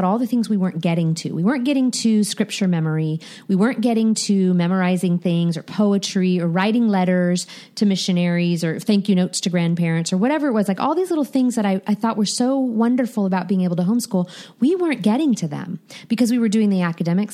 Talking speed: 220 wpm